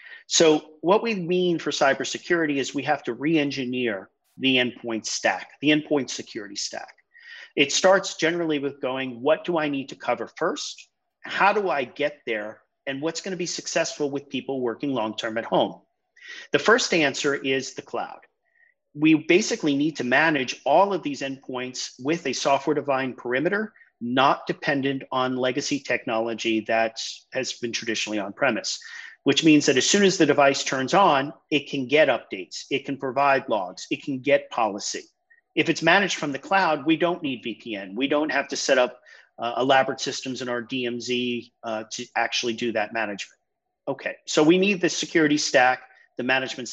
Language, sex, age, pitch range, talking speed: English, male, 40-59, 125-170 Hz, 170 wpm